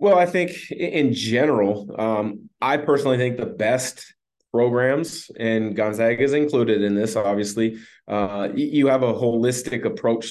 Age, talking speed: 30-49, 145 wpm